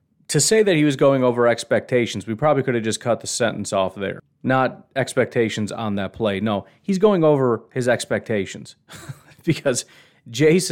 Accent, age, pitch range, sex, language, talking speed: American, 30-49, 105-130 Hz, male, English, 175 wpm